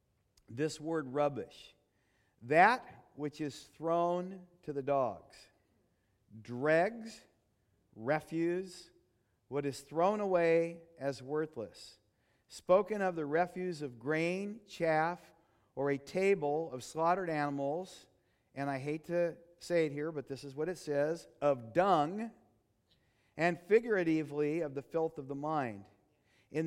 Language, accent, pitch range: English, American, 120-165 Hz